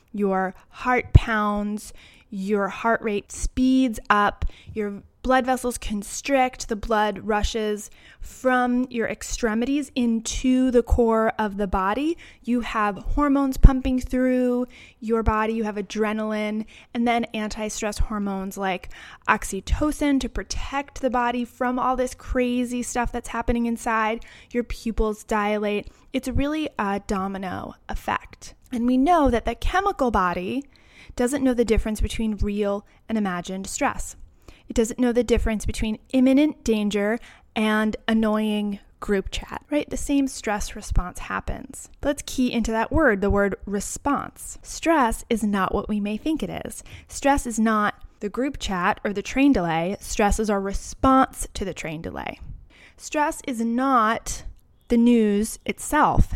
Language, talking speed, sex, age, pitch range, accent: English, 145 wpm, female, 20-39, 210-255 Hz, American